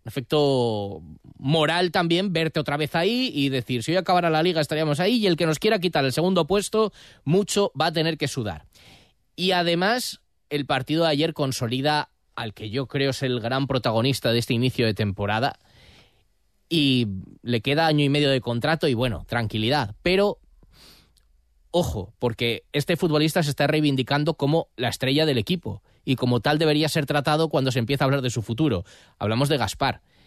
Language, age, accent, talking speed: Spanish, 20-39, Spanish, 185 wpm